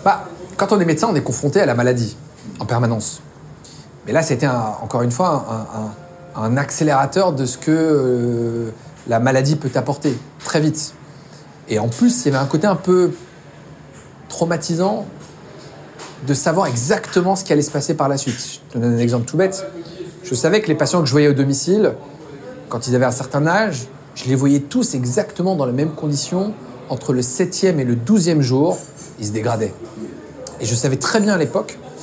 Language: French